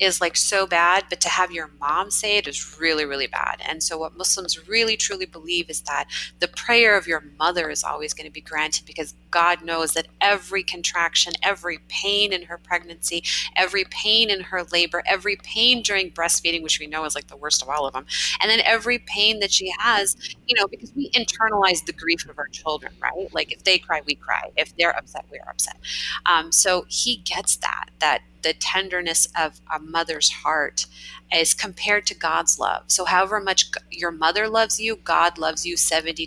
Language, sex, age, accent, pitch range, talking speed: English, female, 30-49, American, 155-195 Hz, 205 wpm